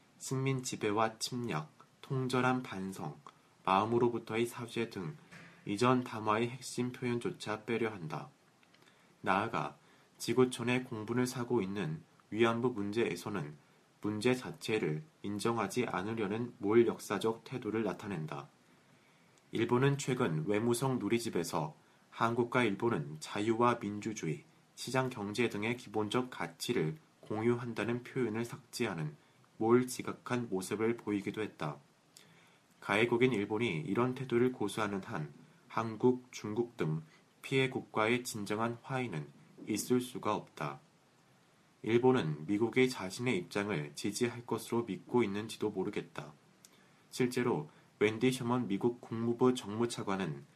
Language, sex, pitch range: Korean, male, 105-125 Hz